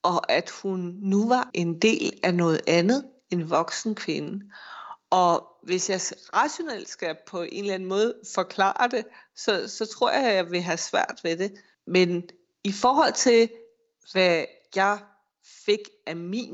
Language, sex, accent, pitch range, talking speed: Danish, female, native, 180-225 Hz, 165 wpm